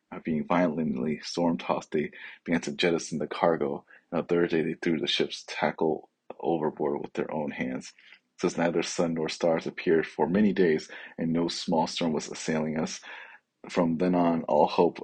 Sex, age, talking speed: male, 30-49, 170 wpm